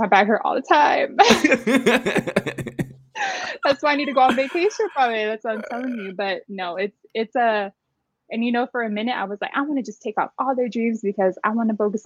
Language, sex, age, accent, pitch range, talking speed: English, female, 20-39, American, 185-225 Hz, 235 wpm